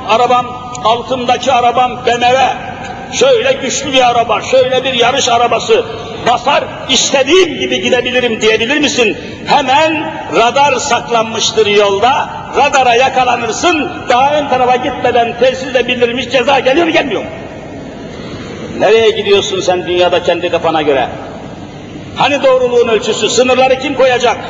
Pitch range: 220-275 Hz